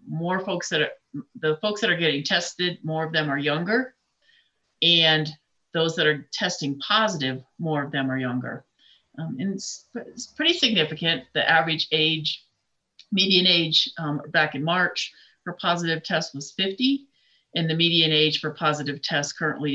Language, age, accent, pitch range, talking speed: English, 50-69, American, 150-180 Hz, 165 wpm